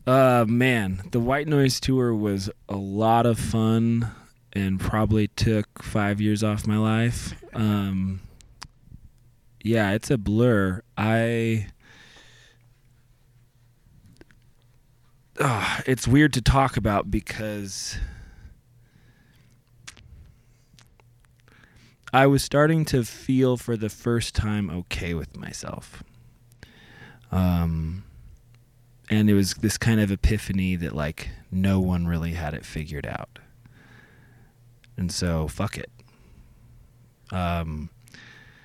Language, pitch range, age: English, 95-120 Hz, 20-39